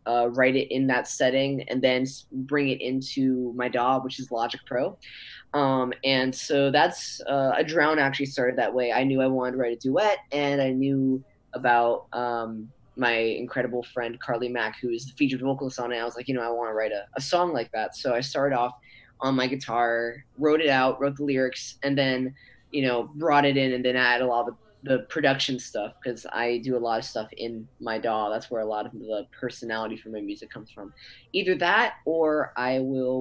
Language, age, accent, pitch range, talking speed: English, 10-29, American, 120-135 Hz, 225 wpm